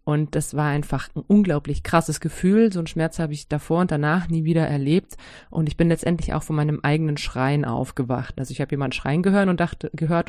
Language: German